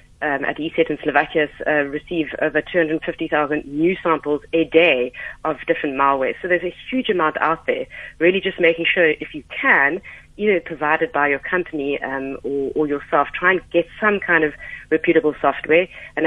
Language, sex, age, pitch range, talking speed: English, female, 30-49, 140-165 Hz, 175 wpm